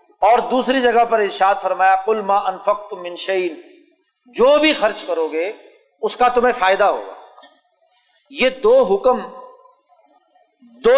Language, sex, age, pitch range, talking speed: Urdu, male, 50-69, 190-265 Hz, 125 wpm